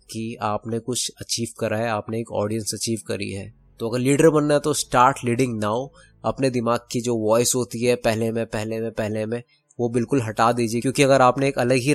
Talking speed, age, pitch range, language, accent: 220 wpm, 20-39, 115-135 Hz, Hindi, native